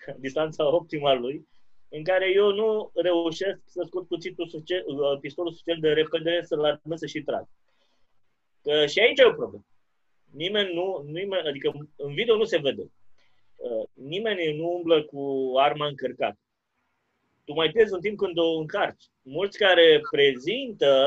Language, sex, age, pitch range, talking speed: Romanian, male, 20-39, 150-245 Hz, 150 wpm